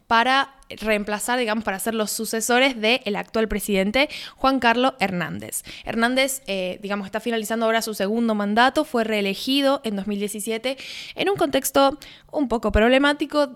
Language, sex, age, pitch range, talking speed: Spanish, female, 10-29, 205-245 Hz, 145 wpm